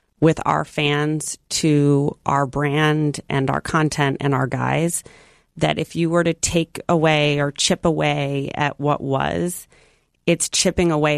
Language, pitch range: English, 140-165 Hz